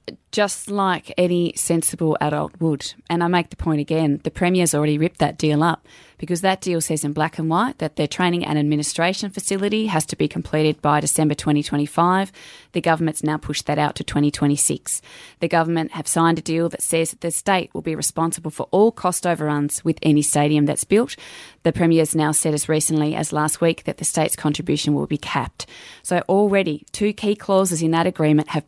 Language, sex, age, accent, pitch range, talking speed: English, female, 20-39, Australian, 150-175 Hz, 200 wpm